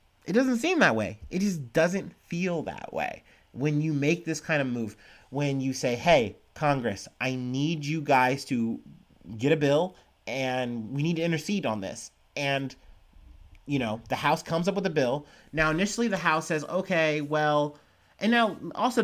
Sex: male